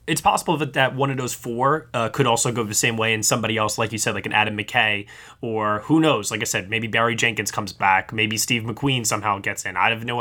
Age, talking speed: 20-39, 265 wpm